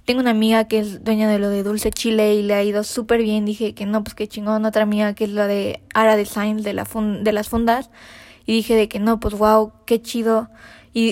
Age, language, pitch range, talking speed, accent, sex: 20-39, Spanish, 210-230 Hz, 255 wpm, Mexican, female